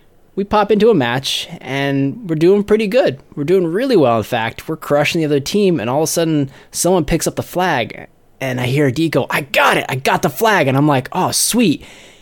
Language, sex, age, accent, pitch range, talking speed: English, male, 20-39, American, 140-180 Hz, 240 wpm